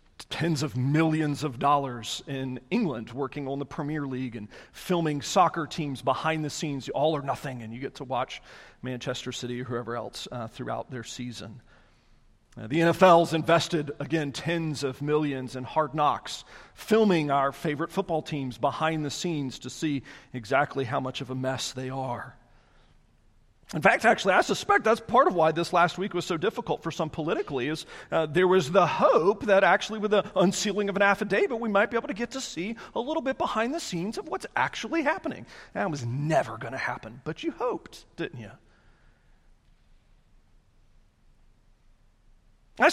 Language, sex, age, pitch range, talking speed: English, male, 40-59, 135-205 Hz, 180 wpm